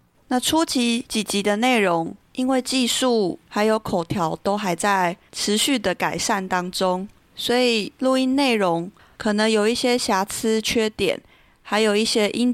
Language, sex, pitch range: Chinese, female, 190-240 Hz